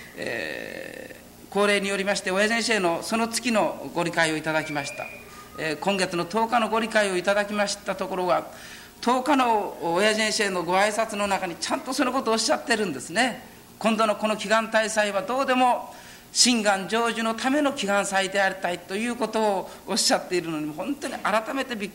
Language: Japanese